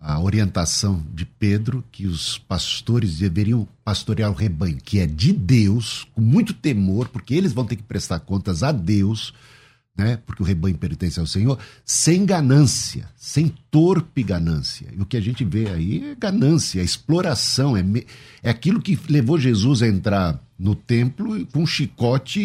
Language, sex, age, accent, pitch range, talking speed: Portuguese, male, 60-79, Brazilian, 105-145 Hz, 175 wpm